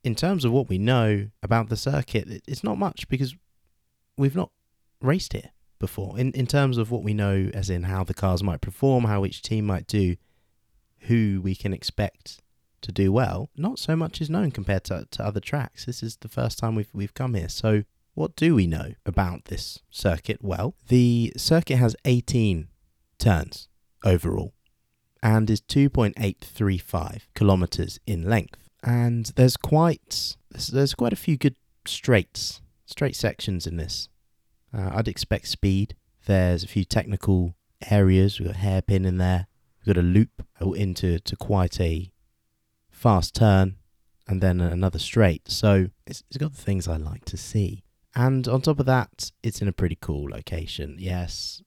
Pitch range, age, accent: 90-120 Hz, 30-49, British